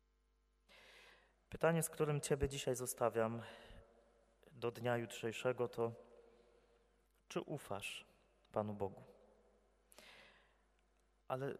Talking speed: 80 wpm